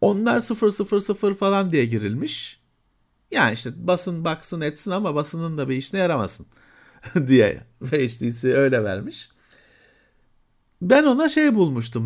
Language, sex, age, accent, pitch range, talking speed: Turkish, male, 50-69, native, 130-210 Hz, 130 wpm